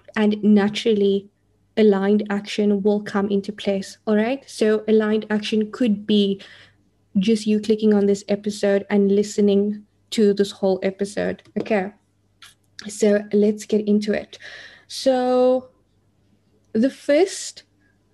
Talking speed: 120 wpm